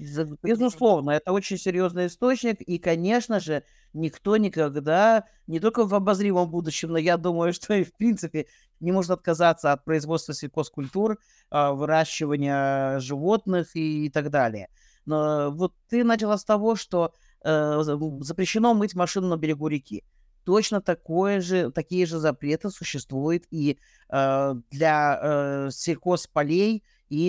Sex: male